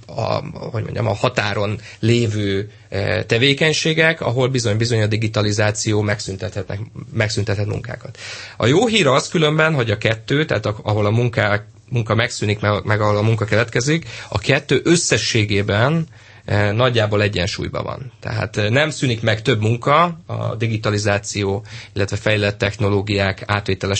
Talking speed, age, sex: 130 wpm, 30-49, male